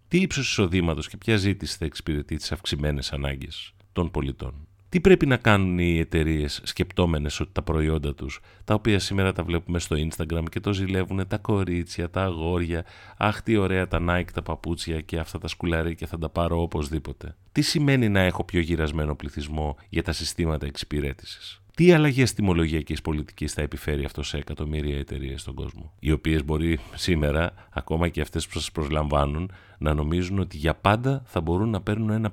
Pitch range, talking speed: 80-95 Hz, 175 wpm